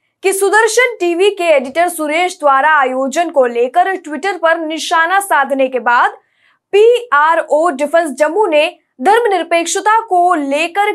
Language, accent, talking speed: Hindi, native, 125 wpm